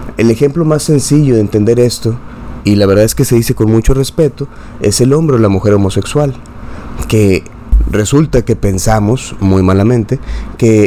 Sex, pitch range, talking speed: male, 105-125 Hz, 170 wpm